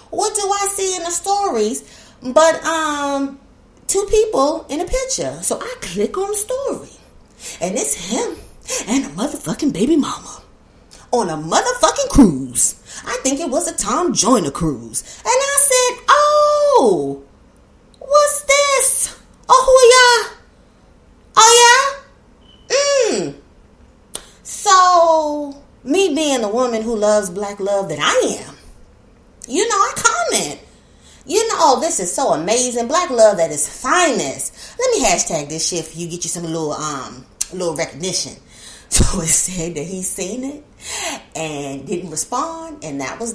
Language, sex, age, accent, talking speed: English, female, 30-49, American, 150 wpm